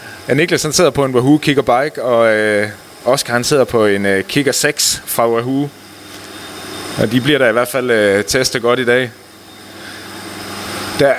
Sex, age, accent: male, 30-49, native